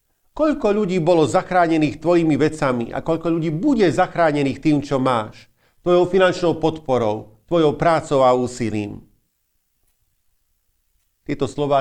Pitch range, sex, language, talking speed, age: 110-155 Hz, male, Slovak, 115 wpm, 40-59